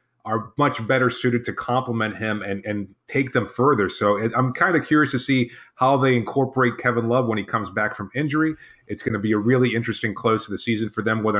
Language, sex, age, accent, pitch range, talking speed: English, male, 30-49, American, 110-130 Hz, 235 wpm